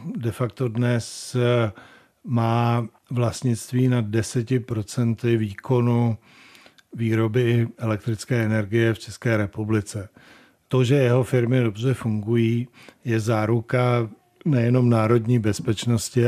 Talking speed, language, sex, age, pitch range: 90 wpm, Czech, male, 50-69, 115-125 Hz